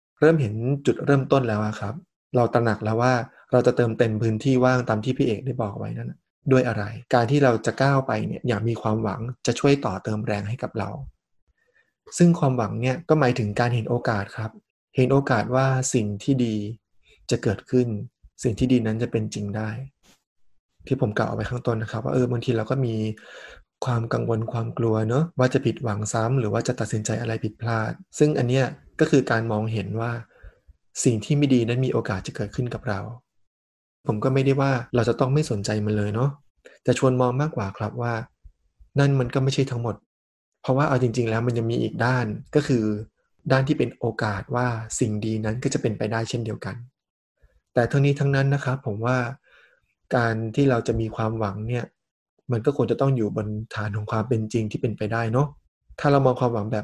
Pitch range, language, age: 110-130 Hz, Thai, 20-39